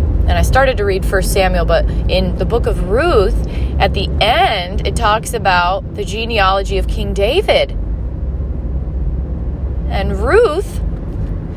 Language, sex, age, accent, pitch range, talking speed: English, female, 30-49, American, 75-85 Hz, 135 wpm